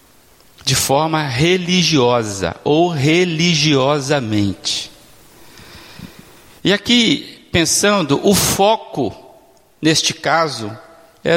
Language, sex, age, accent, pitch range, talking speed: Portuguese, male, 60-79, Brazilian, 170-230 Hz, 70 wpm